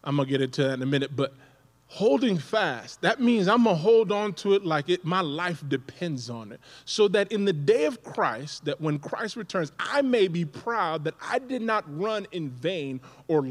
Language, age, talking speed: English, 20-39, 225 wpm